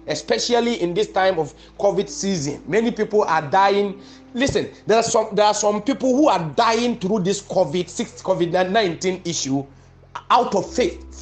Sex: male